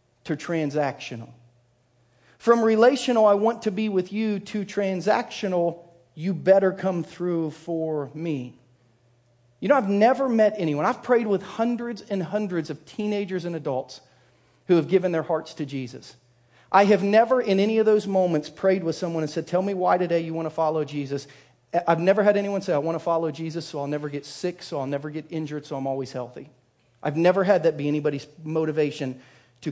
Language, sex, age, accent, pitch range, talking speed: English, male, 40-59, American, 130-180 Hz, 190 wpm